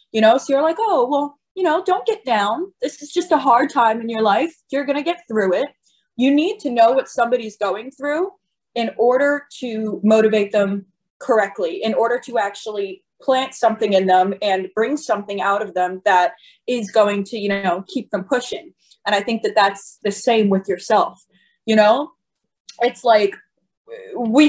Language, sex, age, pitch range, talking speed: English, female, 20-39, 205-290 Hz, 190 wpm